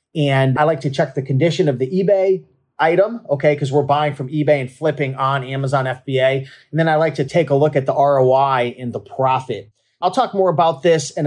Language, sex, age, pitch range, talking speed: English, male, 30-49, 130-160 Hz, 225 wpm